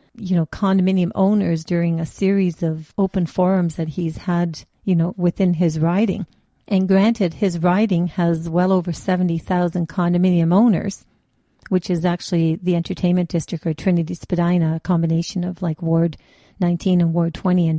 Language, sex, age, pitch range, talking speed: English, female, 50-69, 175-205 Hz, 160 wpm